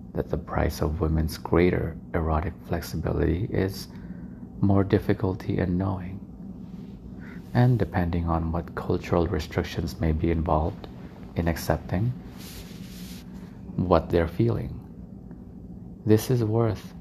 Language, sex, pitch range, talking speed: English, male, 80-100 Hz, 105 wpm